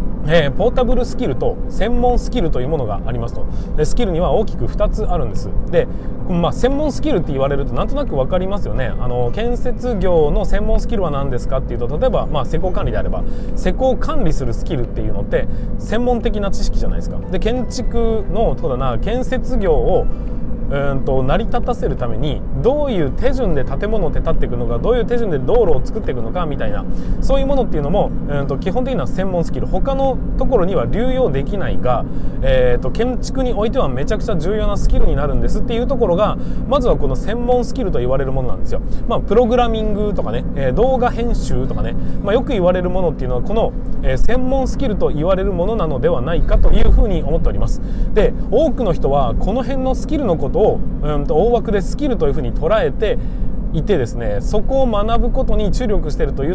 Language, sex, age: Japanese, male, 20-39